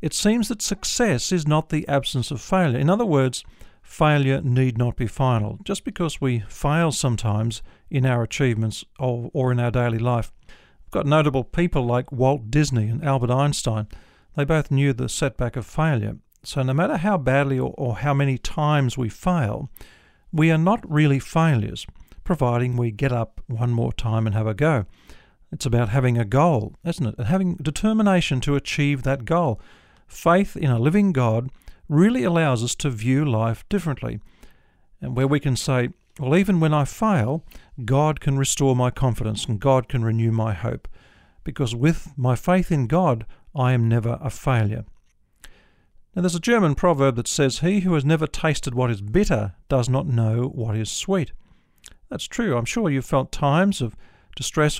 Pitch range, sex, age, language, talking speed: 120-155 Hz, male, 50-69, English, 180 wpm